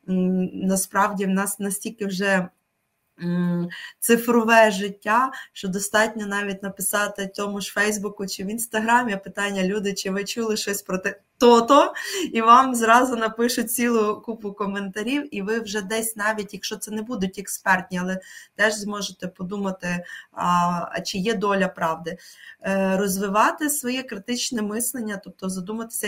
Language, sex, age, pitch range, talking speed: Ukrainian, female, 20-39, 190-225 Hz, 135 wpm